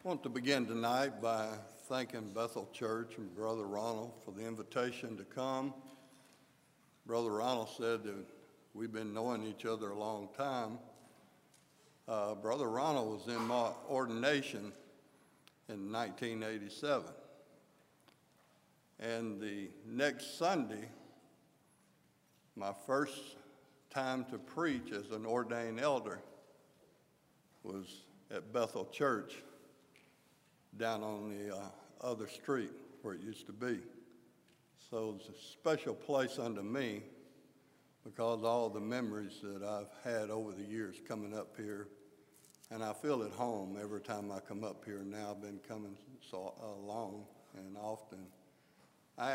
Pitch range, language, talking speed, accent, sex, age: 105-130 Hz, English, 130 wpm, American, male, 60-79